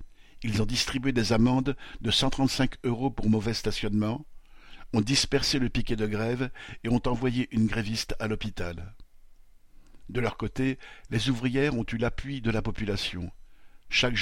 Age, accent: 60-79, French